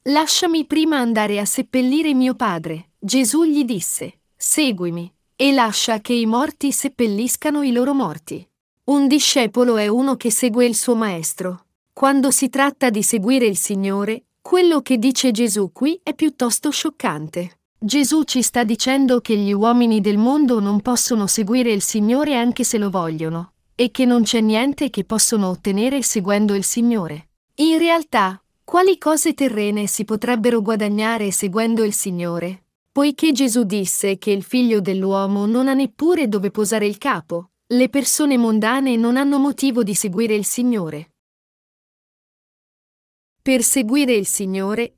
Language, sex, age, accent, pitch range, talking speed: Italian, female, 40-59, native, 205-270 Hz, 150 wpm